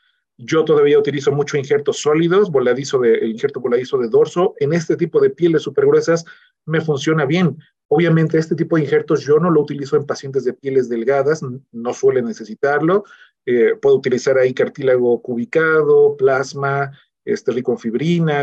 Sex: male